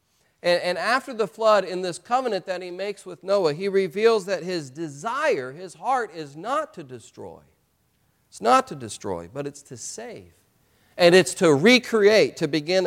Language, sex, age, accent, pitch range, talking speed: English, male, 40-59, American, 140-200 Hz, 175 wpm